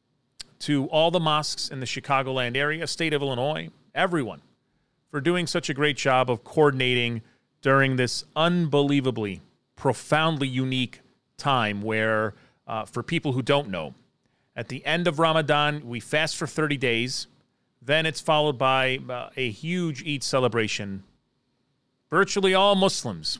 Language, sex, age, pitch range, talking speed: English, male, 40-59, 130-165 Hz, 140 wpm